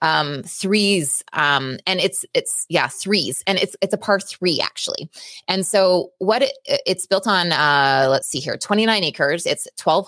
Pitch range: 145-190 Hz